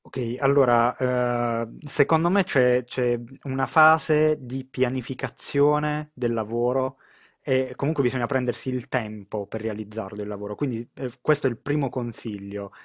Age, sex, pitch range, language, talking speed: 20-39, male, 110-130 Hz, Italian, 130 wpm